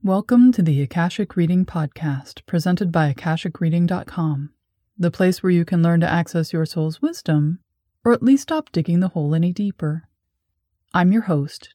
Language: English